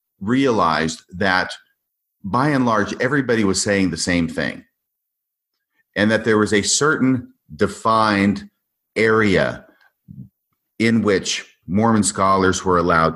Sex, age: male, 40-59